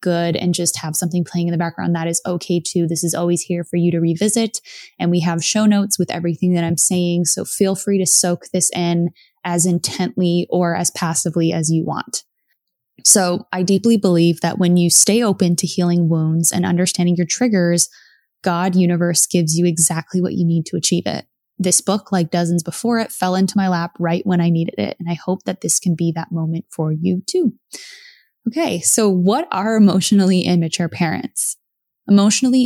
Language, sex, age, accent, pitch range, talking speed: English, female, 20-39, American, 170-195 Hz, 200 wpm